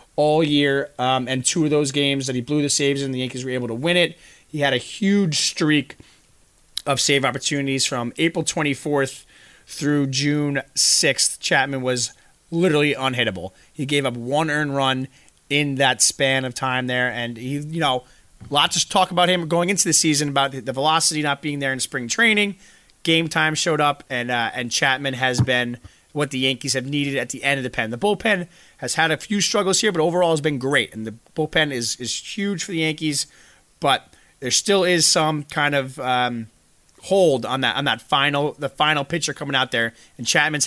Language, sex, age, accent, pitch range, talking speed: English, male, 30-49, American, 130-155 Hz, 205 wpm